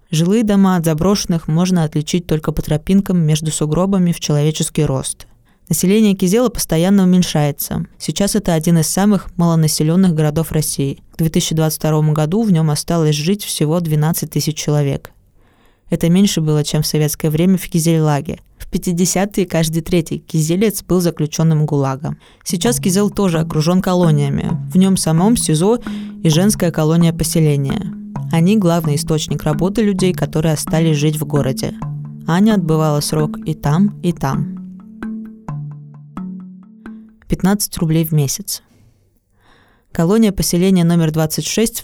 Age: 20-39